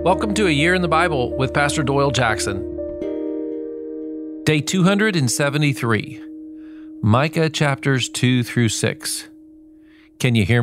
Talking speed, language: 120 wpm, English